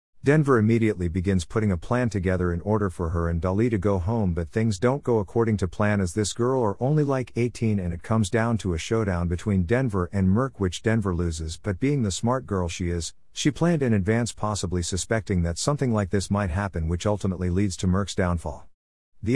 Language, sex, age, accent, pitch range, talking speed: English, male, 50-69, American, 90-110 Hz, 215 wpm